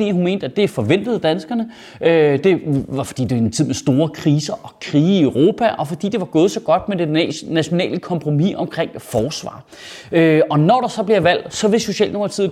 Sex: male